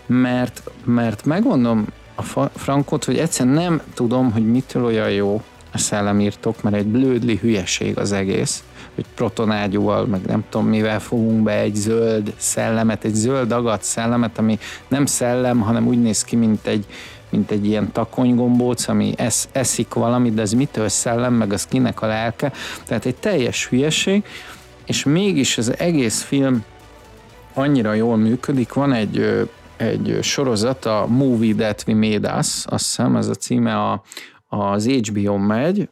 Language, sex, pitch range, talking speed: Hungarian, male, 105-125 Hz, 145 wpm